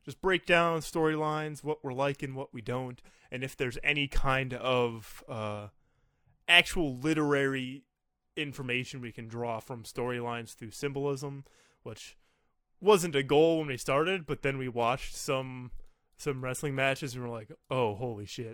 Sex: male